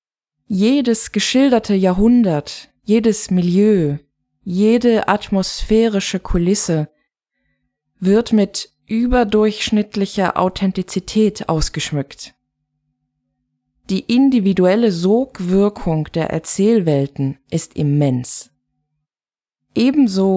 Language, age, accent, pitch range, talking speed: German, 20-39, German, 160-215 Hz, 60 wpm